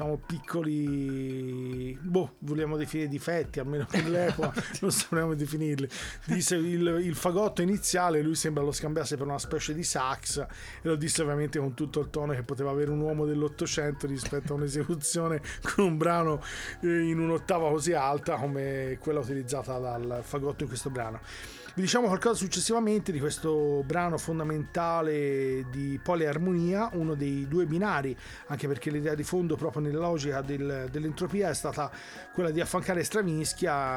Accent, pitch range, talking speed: native, 145-175 Hz, 155 wpm